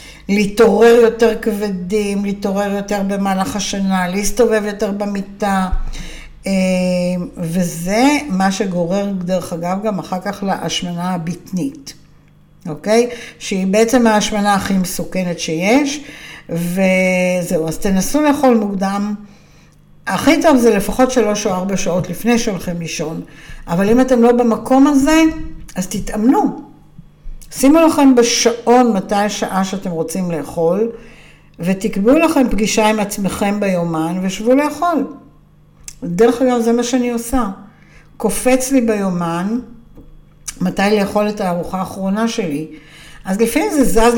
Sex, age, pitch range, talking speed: female, 60-79, 180-230 Hz, 115 wpm